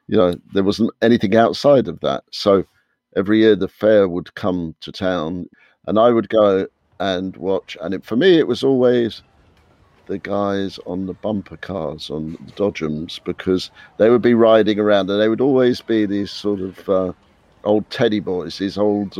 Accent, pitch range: British, 90-110 Hz